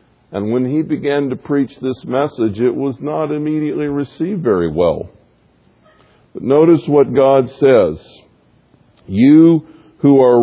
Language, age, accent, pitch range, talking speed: English, 50-69, American, 140-180 Hz, 130 wpm